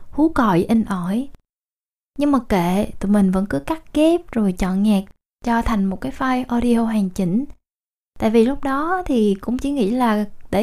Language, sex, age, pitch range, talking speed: Vietnamese, female, 20-39, 205-260 Hz, 190 wpm